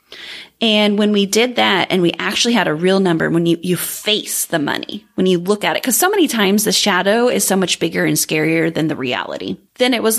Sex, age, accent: female, 30-49, American